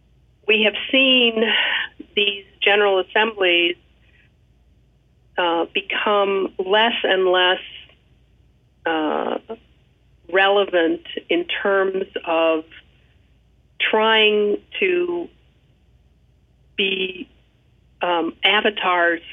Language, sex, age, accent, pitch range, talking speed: English, female, 50-69, American, 175-240 Hz, 65 wpm